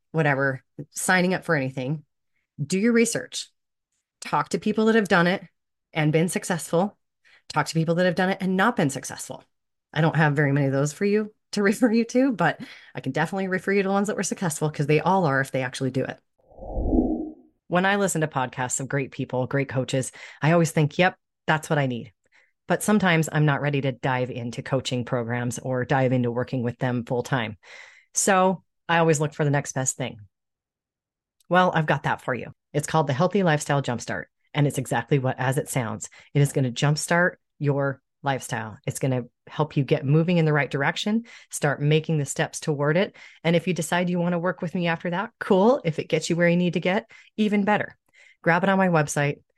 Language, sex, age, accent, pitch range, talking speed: English, female, 30-49, American, 135-175 Hz, 215 wpm